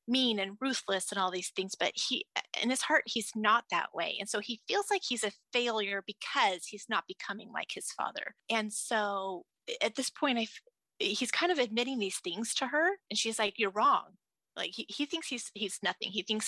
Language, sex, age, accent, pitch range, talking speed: English, female, 30-49, American, 200-250 Hz, 220 wpm